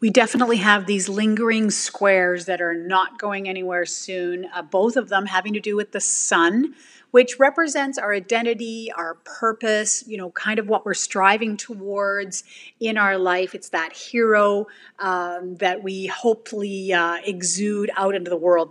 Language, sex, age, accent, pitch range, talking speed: English, female, 30-49, American, 185-235 Hz, 165 wpm